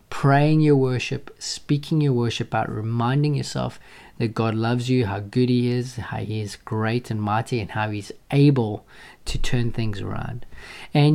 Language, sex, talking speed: English, male, 170 wpm